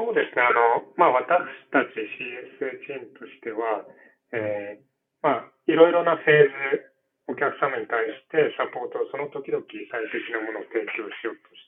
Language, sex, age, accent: Japanese, male, 40-59, native